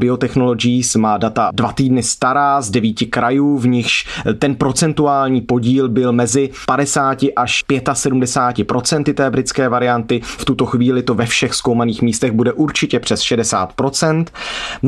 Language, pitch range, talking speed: Czech, 125-145 Hz, 135 wpm